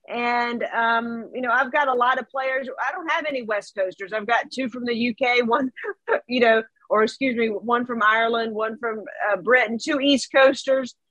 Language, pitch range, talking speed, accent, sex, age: English, 235-275 Hz, 205 wpm, American, female, 40-59